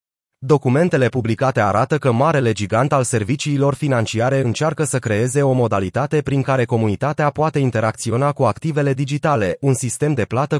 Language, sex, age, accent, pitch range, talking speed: Romanian, male, 30-49, native, 120-145 Hz, 145 wpm